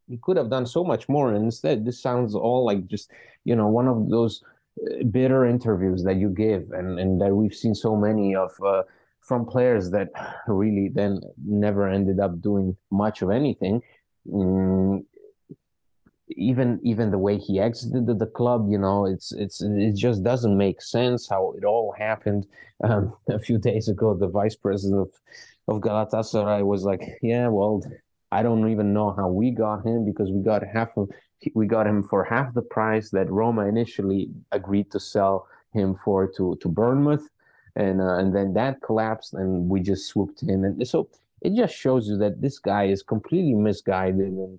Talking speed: 185 wpm